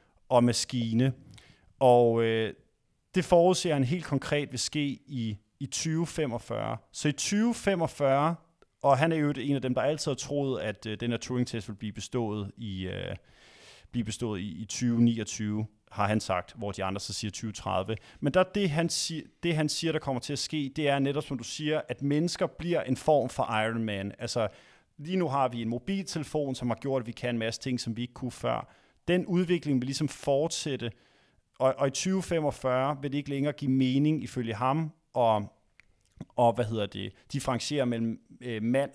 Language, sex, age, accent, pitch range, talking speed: Danish, male, 30-49, native, 115-155 Hz, 190 wpm